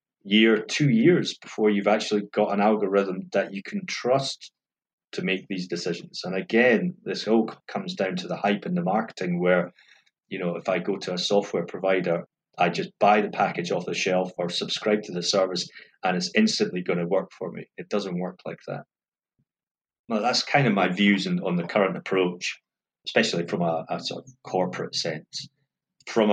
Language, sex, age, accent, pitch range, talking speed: English, male, 30-49, British, 90-105 Hz, 190 wpm